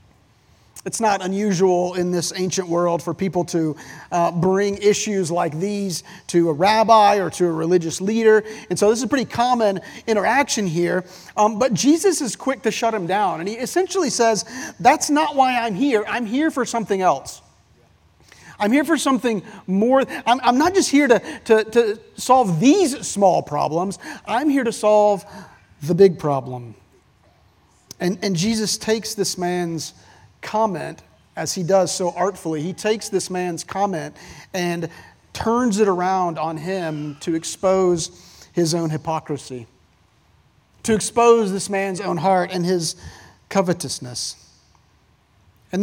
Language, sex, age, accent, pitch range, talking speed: English, male, 40-59, American, 175-225 Hz, 155 wpm